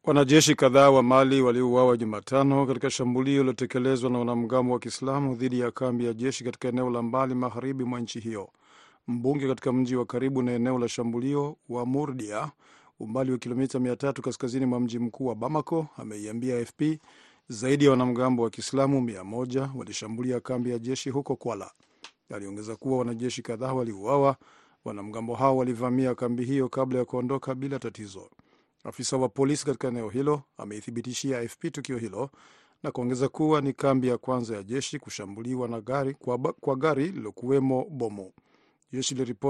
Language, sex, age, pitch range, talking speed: Swahili, male, 50-69, 120-135 Hz, 160 wpm